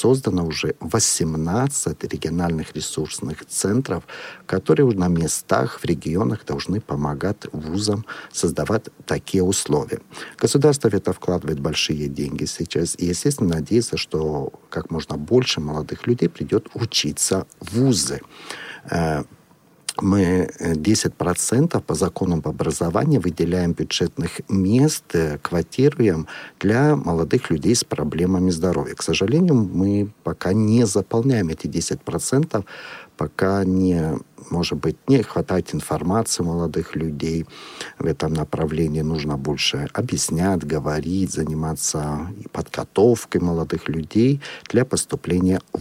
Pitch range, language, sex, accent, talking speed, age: 80-110 Hz, Russian, male, native, 110 wpm, 50-69